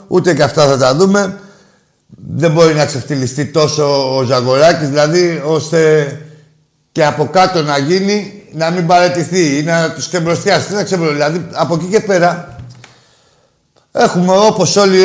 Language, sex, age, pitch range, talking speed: Greek, male, 60-79, 135-185 Hz, 150 wpm